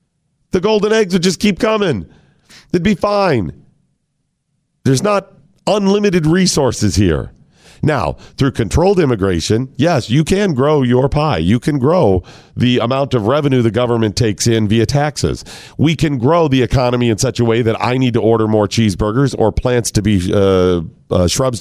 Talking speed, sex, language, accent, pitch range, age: 170 wpm, male, English, American, 115-165 Hz, 50-69